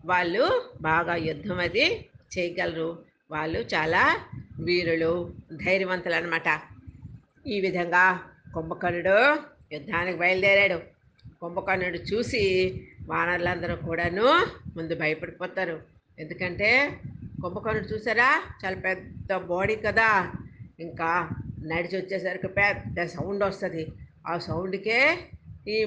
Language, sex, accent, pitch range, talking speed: Telugu, female, native, 165-190 Hz, 85 wpm